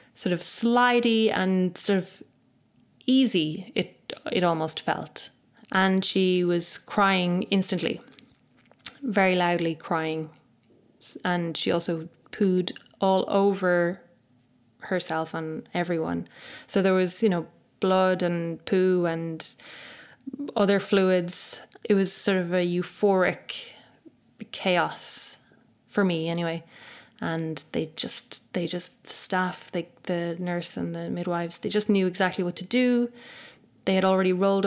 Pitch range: 170-195 Hz